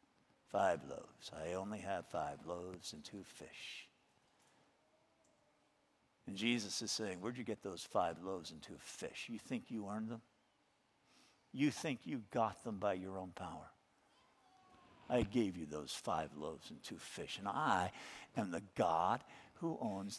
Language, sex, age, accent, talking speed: English, male, 50-69, American, 160 wpm